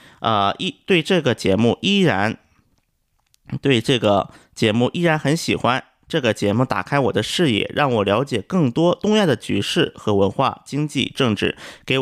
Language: Chinese